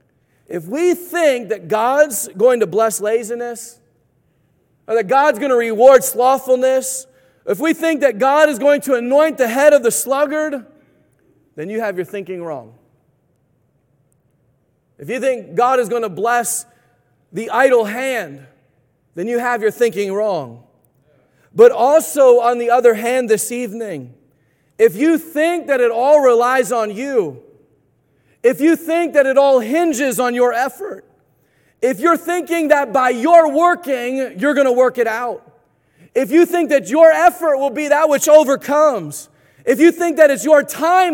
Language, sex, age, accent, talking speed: English, male, 40-59, American, 160 wpm